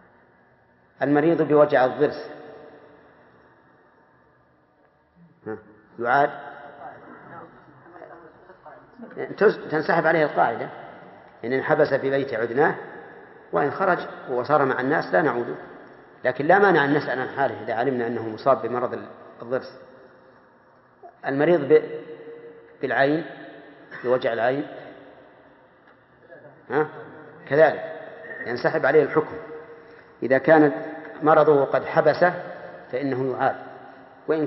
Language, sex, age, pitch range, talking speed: Arabic, male, 40-59, 130-160 Hz, 85 wpm